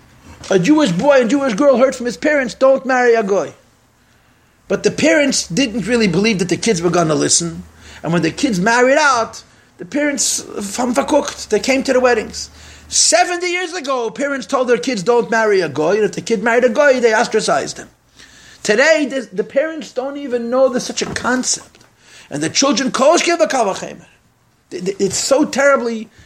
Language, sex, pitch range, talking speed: English, male, 200-275 Hz, 175 wpm